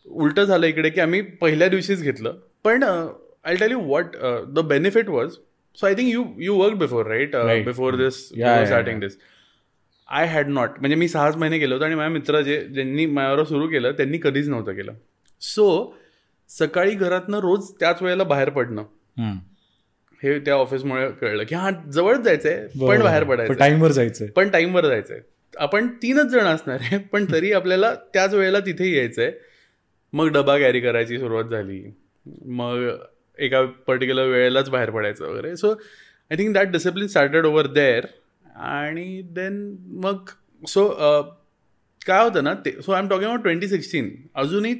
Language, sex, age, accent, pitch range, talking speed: Marathi, male, 20-39, native, 135-195 Hz, 165 wpm